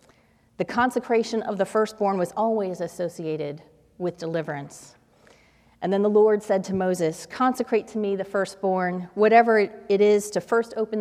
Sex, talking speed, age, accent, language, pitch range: female, 155 wpm, 30-49, American, English, 180-225 Hz